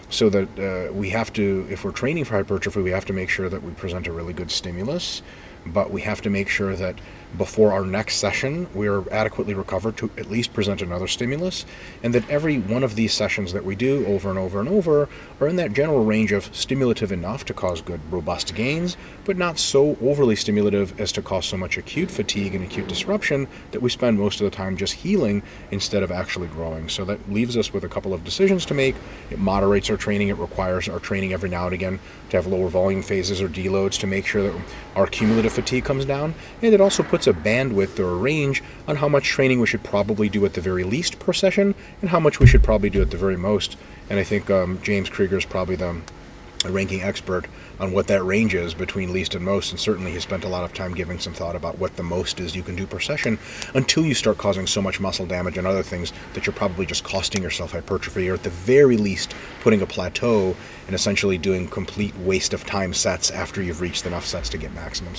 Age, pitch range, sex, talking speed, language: 30-49, 90-110 Hz, male, 235 wpm, Finnish